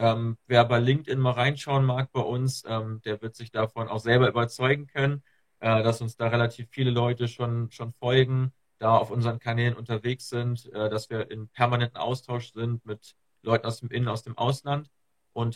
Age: 40-59